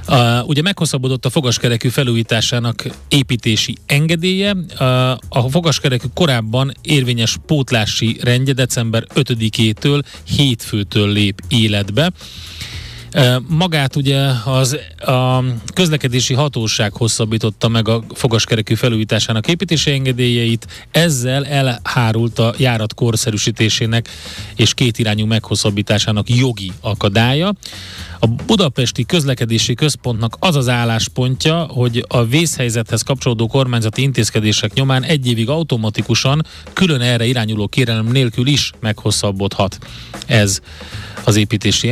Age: 30-49